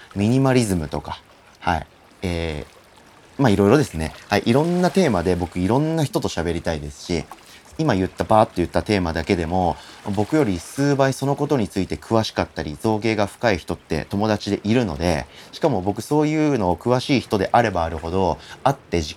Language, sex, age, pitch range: Japanese, male, 30-49, 85-125 Hz